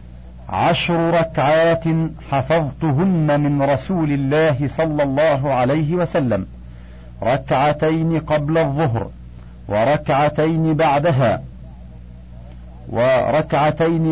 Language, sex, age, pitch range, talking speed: Arabic, male, 50-69, 120-160 Hz, 70 wpm